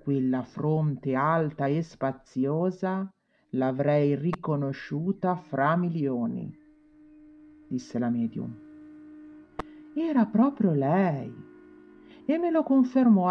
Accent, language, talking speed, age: native, Italian, 85 wpm, 50-69